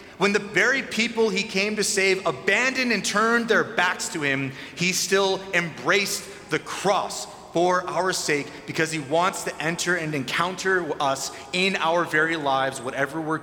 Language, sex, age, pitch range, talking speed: English, male, 30-49, 140-185 Hz, 165 wpm